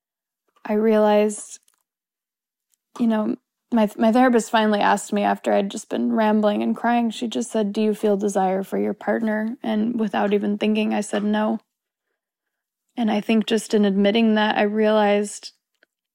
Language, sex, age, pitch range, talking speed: English, female, 20-39, 210-235 Hz, 160 wpm